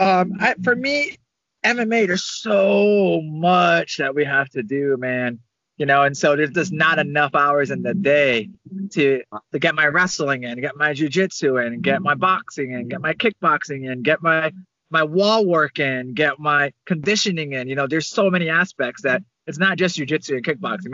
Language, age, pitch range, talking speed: English, 20-39, 145-190 Hz, 190 wpm